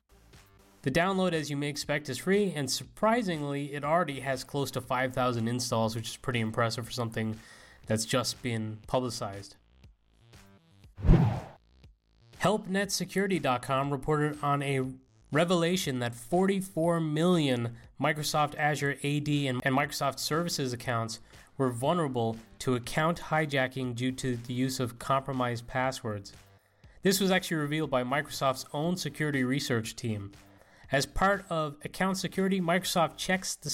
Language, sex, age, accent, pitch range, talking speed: English, male, 30-49, American, 120-155 Hz, 130 wpm